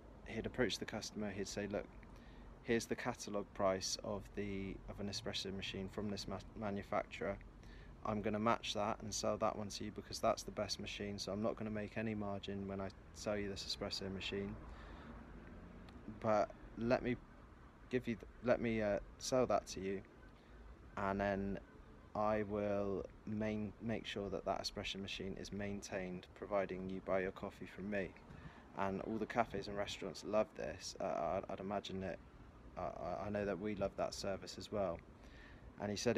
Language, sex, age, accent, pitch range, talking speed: English, male, 20-39, British, 95-110 Hz, 185 wpm